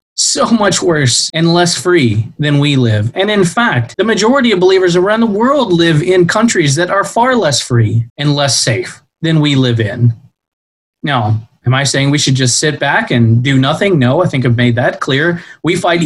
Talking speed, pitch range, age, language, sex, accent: 205 wpm, 125-180 Hz, 20-39, English, male, American